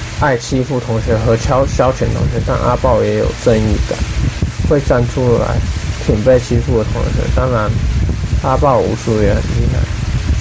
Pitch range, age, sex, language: 110-125 Hz, 20-39, male, Chinese